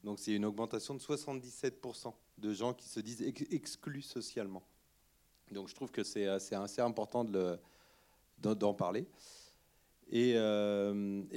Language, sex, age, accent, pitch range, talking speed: French, male, 30-49, French, 100-120 Hz, 135 wpm